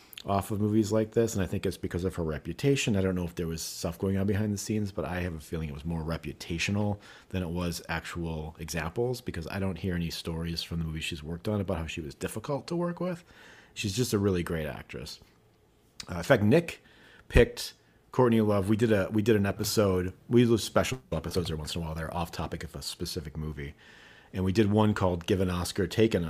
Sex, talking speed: male, 240 wpm